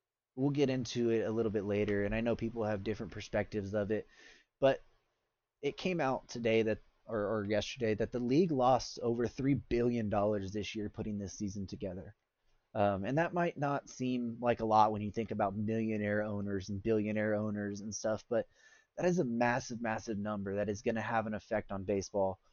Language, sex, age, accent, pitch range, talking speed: English, male, 20-39, American, 105-120 Hz, 200 wpm